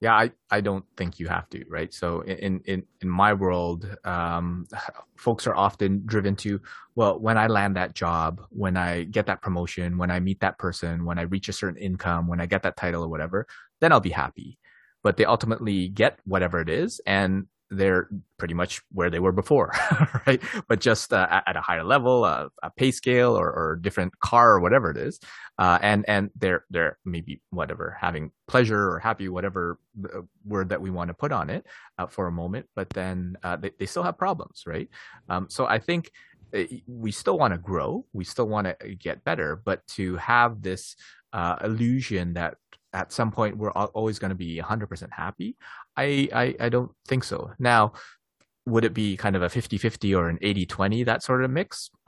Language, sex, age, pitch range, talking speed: English, male, 20-39, 90-110 Hz, 195 wpm